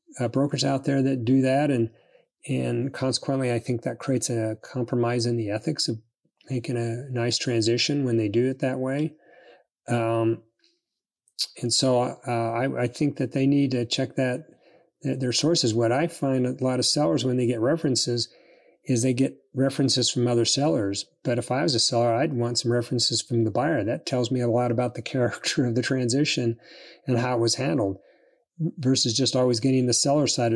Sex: male